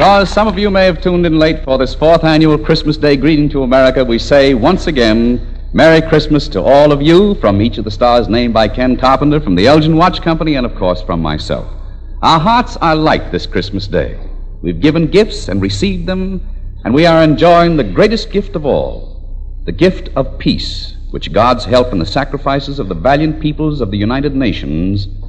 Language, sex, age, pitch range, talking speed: English, male, 60-79, 105-170 Hz, 210 wpm